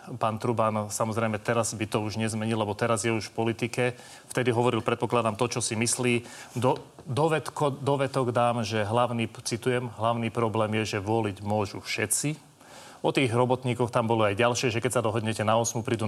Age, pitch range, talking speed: 30-49, 115-130 Hz, 185 wpm